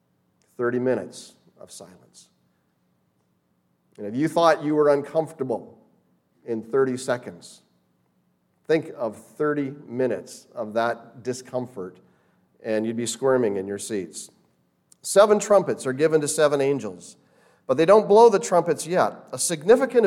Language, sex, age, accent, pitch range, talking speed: English, male, 40-59, American, 120-170 Hz, 130 wpm